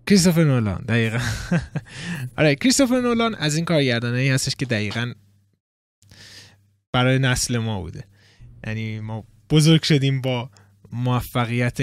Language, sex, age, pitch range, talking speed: Persian, male, 20-39, 115-150 Hz, 120 wpm